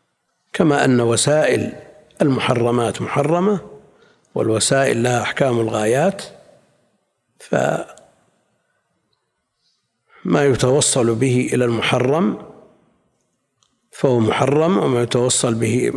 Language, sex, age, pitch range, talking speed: Arabic, male, 60-79, 115-140 Hz, 70 wpm